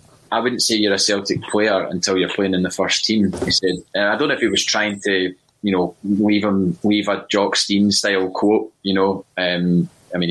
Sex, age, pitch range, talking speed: male, 20-39, 90-100 Hz, 225 wpm